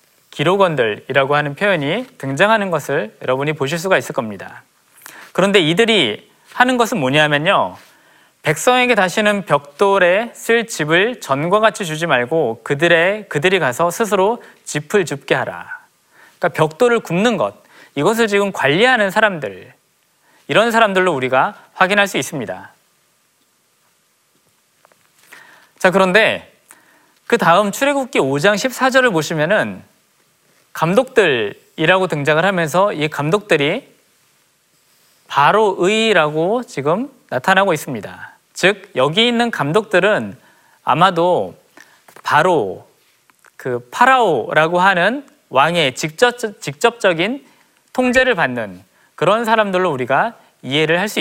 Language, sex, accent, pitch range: Korean, male, native, 160-235 Hz